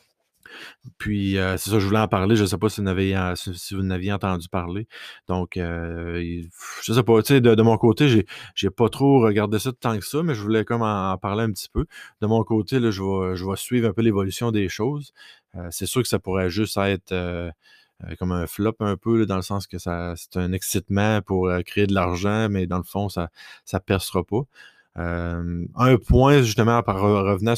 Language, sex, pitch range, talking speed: French, male, 95-110 Hz, 225 wpm